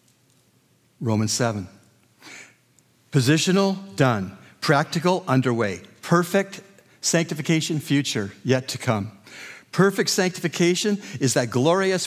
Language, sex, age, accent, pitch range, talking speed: English, male, 50-69, American, 130-180 Hz, 85 wpm